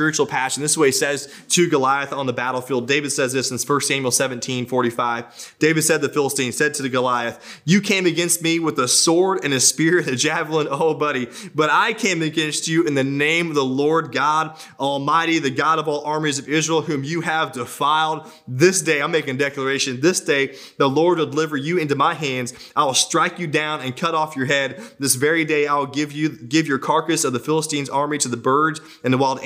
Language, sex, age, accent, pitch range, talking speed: English, male, 20-39, American, 140-165 Hz, 230 wpm